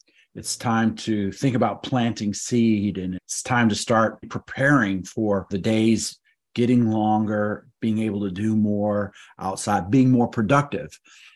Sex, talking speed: male, 145 wpm